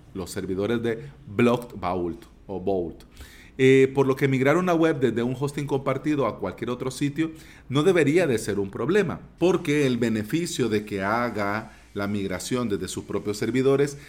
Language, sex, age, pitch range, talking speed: Spanish, male, 40-59, 105-140 Hz, 165 wpm